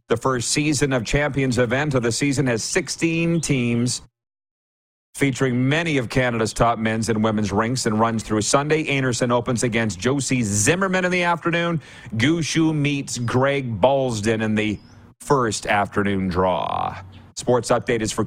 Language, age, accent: English, 40-59, American